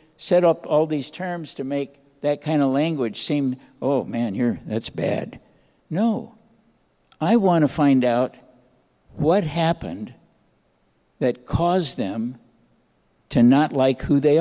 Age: 60-79